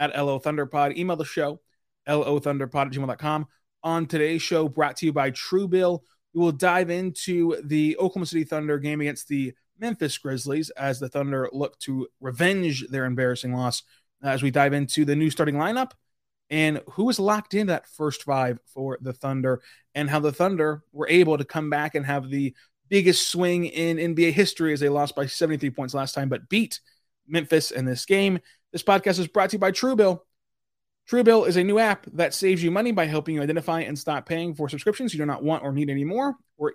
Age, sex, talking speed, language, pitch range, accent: 20-39, male, 200 wpm, English, 140-180 Hz, American